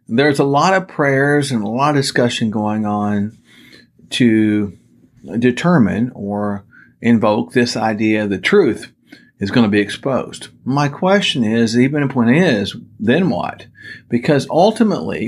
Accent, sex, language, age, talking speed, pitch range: American, male, English, 50-69, 140 wpm, 110-145 Hz